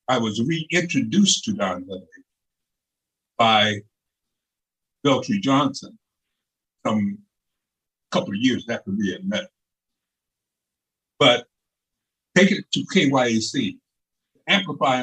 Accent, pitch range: American, 130-190 Hz